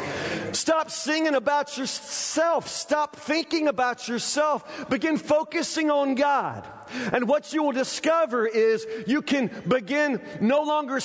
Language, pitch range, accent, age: English, 195-270 Hz, American, 40-59